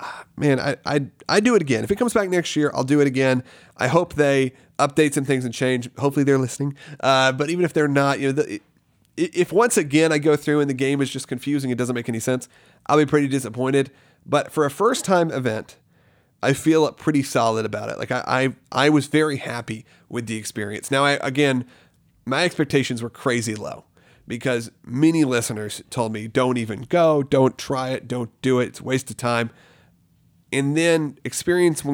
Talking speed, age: 210 wpm, 30-49